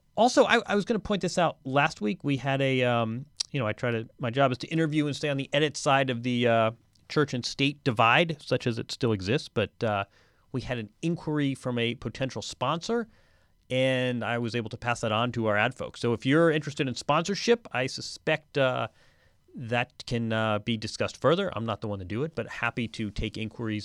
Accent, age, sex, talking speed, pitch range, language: American, 30-49, male, 230 wpm, 115-150 Hz, English